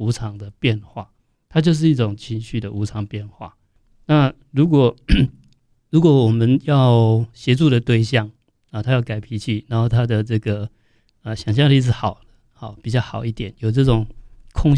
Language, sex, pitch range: Chinese, male, 110-140 Hz